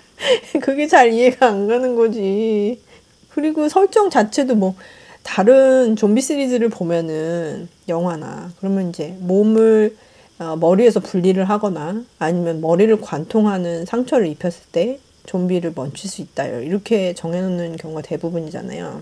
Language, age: Korean, 40-59